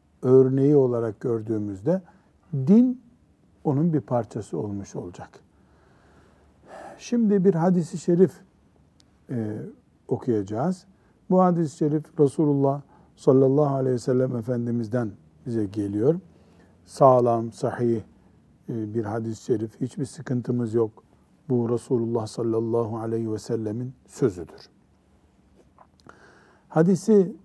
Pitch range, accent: 110-155 Hz, native